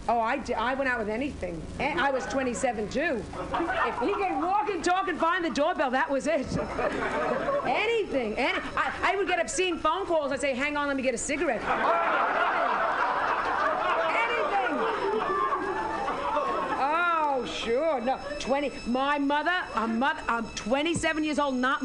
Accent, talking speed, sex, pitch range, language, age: American, 160 wpm, female, 260-375 Hz, English, 40-59